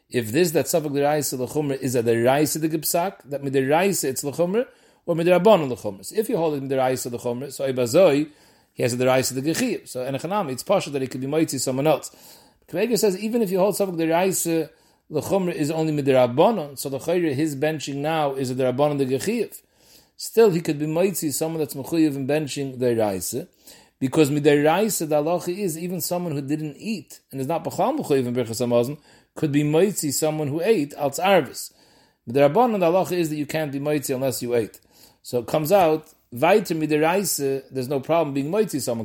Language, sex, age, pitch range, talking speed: English, male, 40-59, 130-170 Hz, 210 wpm